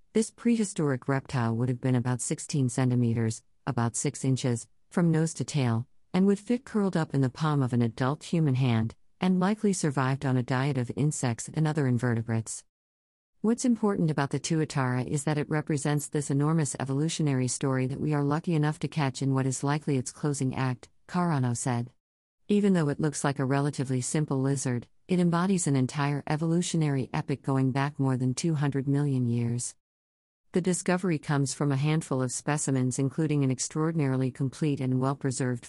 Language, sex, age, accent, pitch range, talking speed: English, female, 50-69, American, 130-155 Hz, 175 wpm